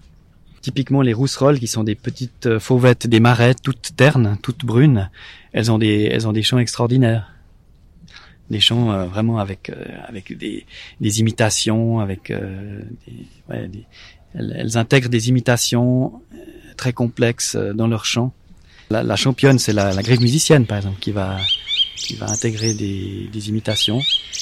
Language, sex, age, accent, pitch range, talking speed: French, male, 30-49, French, 105-125 Hz, 165 wpm